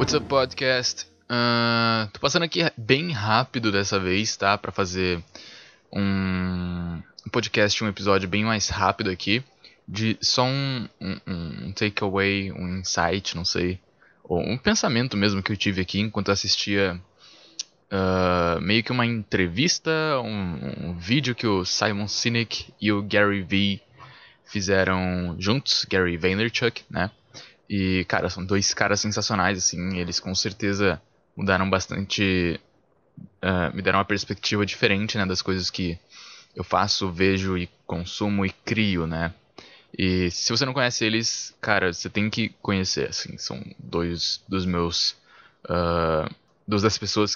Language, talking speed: Portuguese, 145 wpm